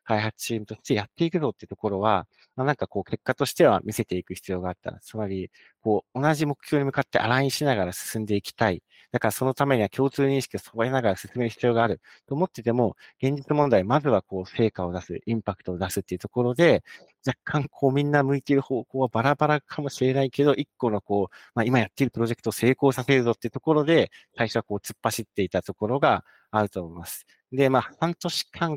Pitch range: 100-130 Hz